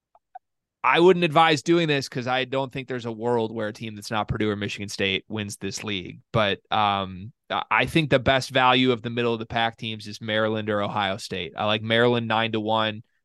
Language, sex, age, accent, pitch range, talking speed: English, male, 20-39, American, 110-130 Hz, 220 wpm